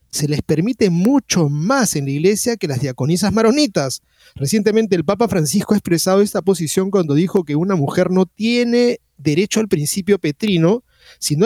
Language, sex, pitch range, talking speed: Spanish, male, 150-205 Hz, 170 wpm